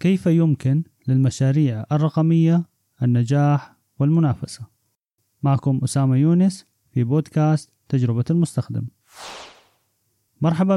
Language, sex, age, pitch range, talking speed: Arabic, male, 30-49, 125-155 Hz, 80 wpm